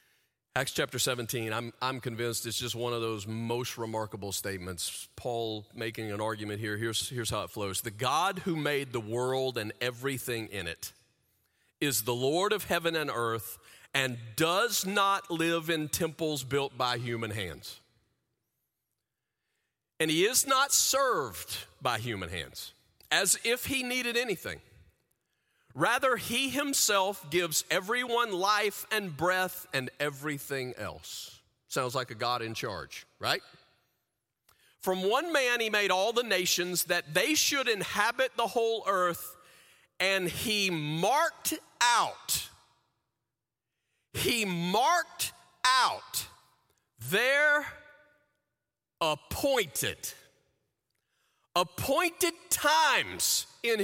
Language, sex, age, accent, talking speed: English, male, 40-59, American, 120 wpm